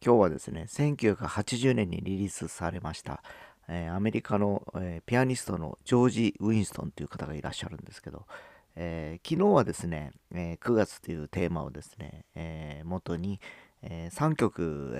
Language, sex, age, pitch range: Japanese, male, 40-59, 85-105 Hz